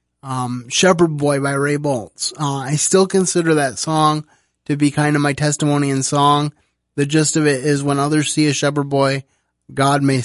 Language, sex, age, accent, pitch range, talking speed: English, male, 20-39, American, 135-155 Hz, 195 wpm